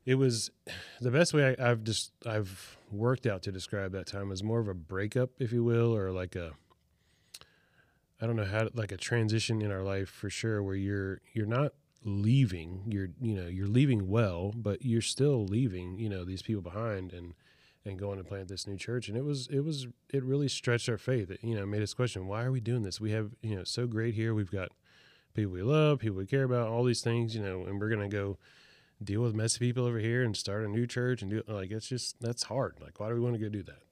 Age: 30-49